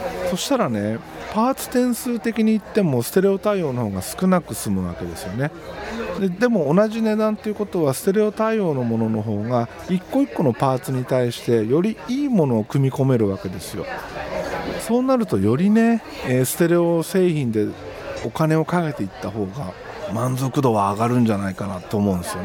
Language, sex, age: Japanese, male, 40-59